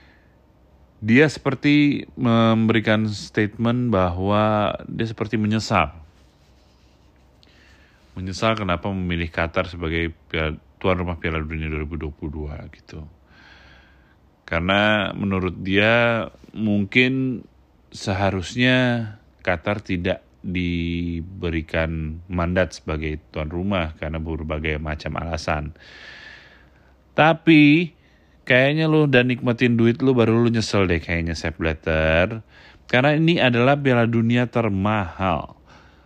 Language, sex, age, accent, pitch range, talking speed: Indonesian, male, 30-49, native, 80-110 Hz, 90 wpm